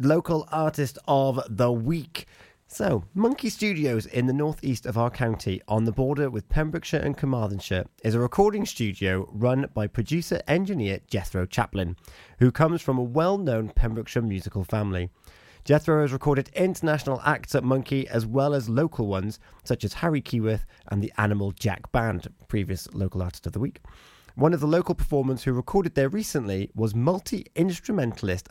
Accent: British